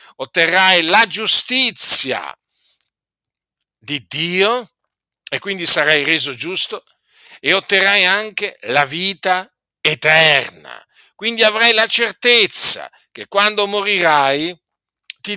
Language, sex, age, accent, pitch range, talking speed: Italian, male, 50-69, native, 165-205 Hz, 95 wpm